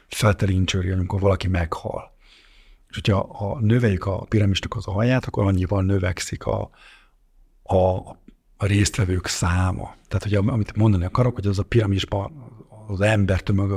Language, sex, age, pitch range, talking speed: Hungarian, male, 50-69, 100-115 Hz, 135 wpm